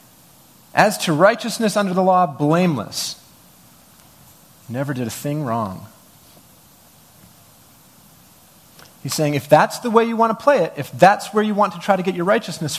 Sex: male